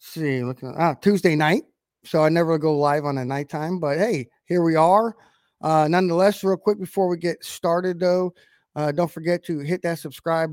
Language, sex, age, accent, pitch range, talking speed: English, male, 20-39, American, 155-180 Hz, 195 wpm